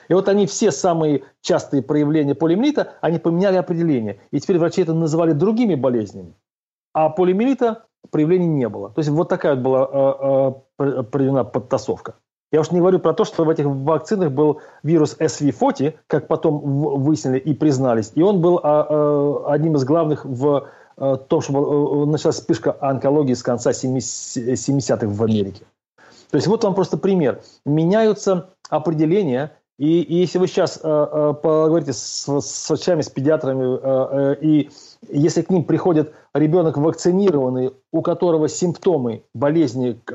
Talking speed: 150 wpm